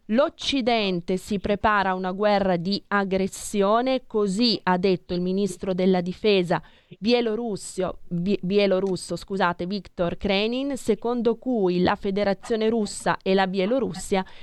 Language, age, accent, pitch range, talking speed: Italian, 20-39, native, 180-215 Hz, 110 wpm